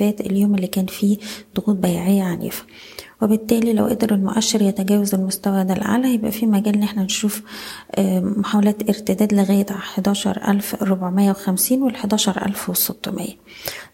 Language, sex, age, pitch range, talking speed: Arabic, female, 20-39, 195-215 Hz, 120 wpm